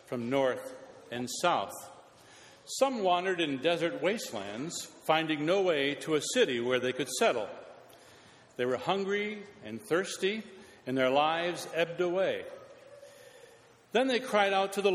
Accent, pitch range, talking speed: American, 130-195 Hz, 140 wpm